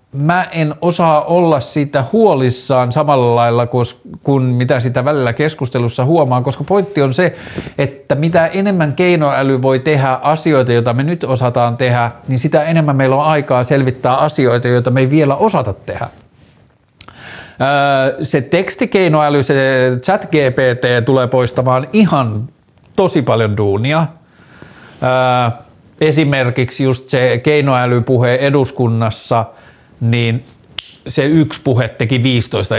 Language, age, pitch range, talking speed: Finnish, 50-69, 120-150 Hz, 120 wpm